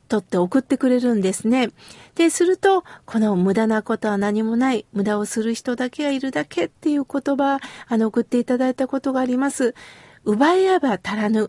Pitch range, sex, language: 225-310 Hz, female, Japanese